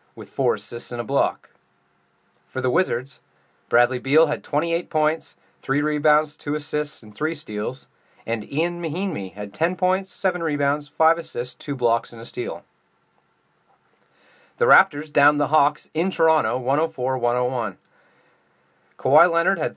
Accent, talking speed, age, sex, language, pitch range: American, 145 wpm, 30-49, male, English, 135-170 Hz